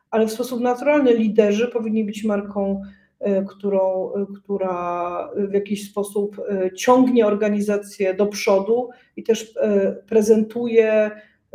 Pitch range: 190-225 Hz